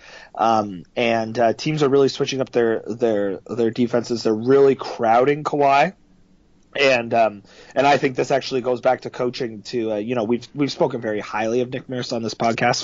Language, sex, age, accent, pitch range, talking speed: English, male, 30-49, American, 110-130 Hz, 195 wpm